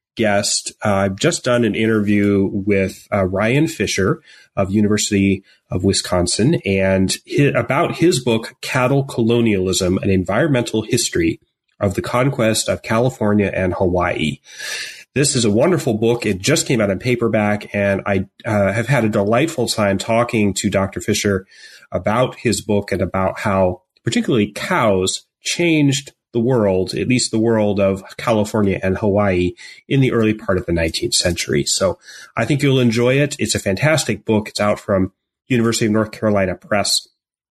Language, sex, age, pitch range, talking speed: English, male, 30-49, 95-120 Hz, 160 wpm